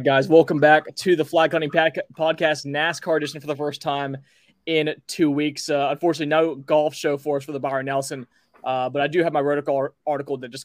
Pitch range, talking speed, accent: 135-155 Hz, 220 wpm, American